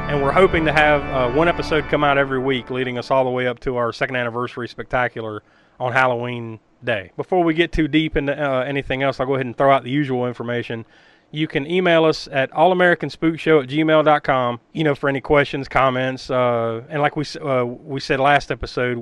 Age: 30-49